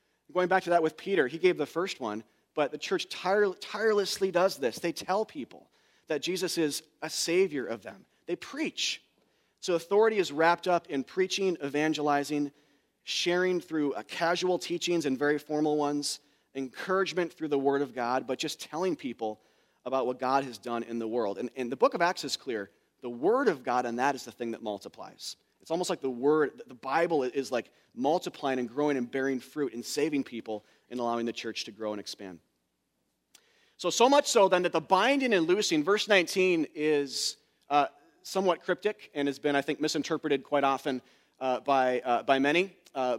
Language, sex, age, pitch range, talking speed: English, male, 30-49, 135-180 Hz, 195 wpm